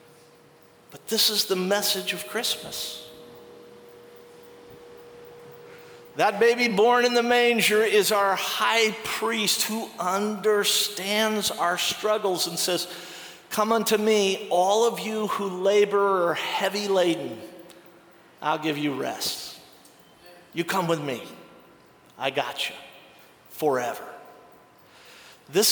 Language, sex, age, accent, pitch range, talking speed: English, male, 50-69, American, 170-230 Hz, 110 wpm